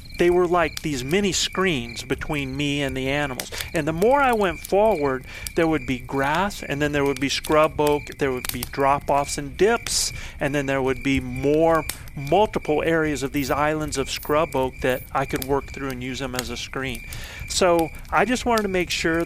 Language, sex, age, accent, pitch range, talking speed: English, male, 40-59, American, 130-170 Hz, 205 wpm